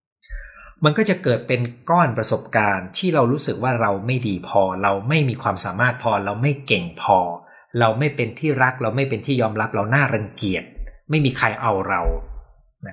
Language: Thai